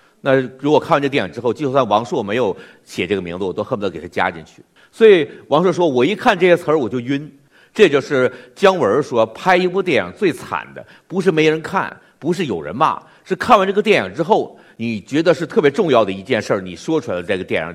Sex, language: male, Chinese